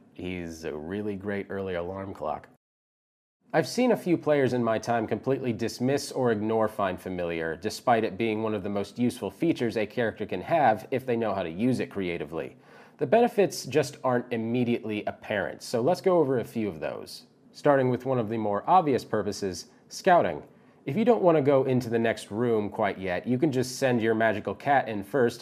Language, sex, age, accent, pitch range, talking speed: English, male, 30-49, American, 105-130 Hz, 205 wpm